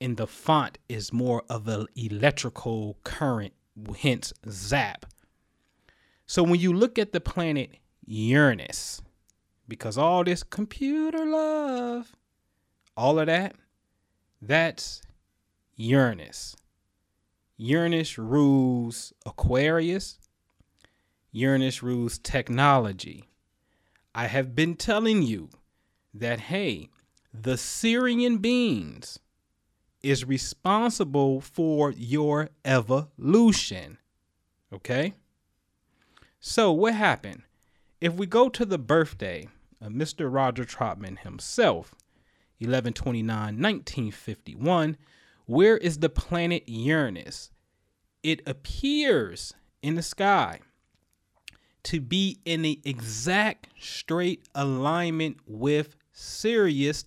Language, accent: English, American